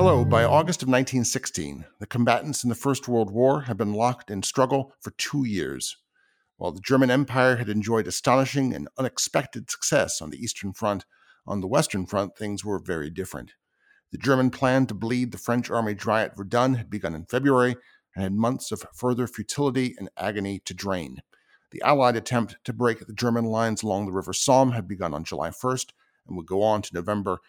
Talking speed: 195 wpm